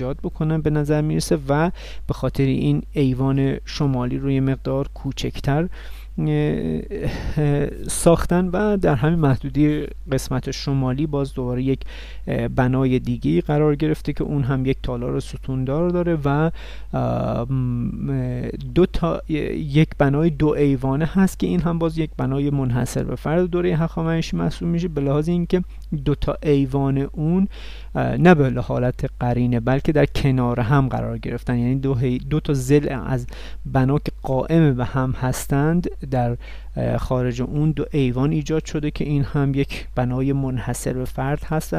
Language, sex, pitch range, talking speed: Persian, male, 130-155 Hz, 145 wpm